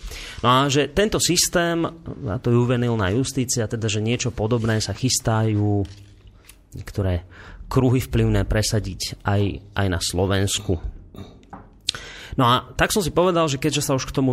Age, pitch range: 30-49, 105-130 Hz